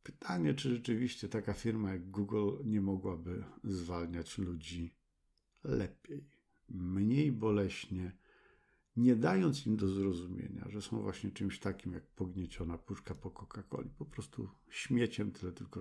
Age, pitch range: 50-69, 90-120 Hz